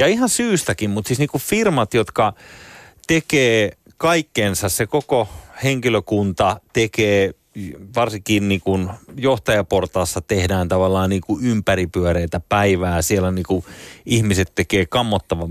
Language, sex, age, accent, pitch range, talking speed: Finnish, male, 30-49, native, 90-115 Hz, 95 wpm